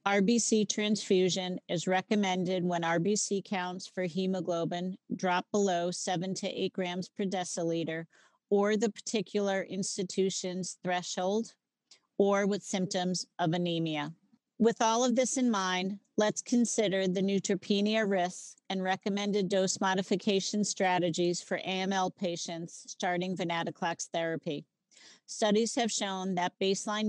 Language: English